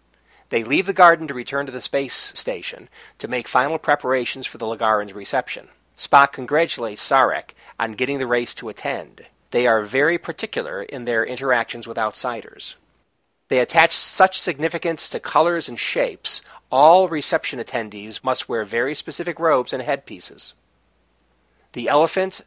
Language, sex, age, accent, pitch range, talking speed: English, male, 40-59, American, 115-165 Hz, 150 wpm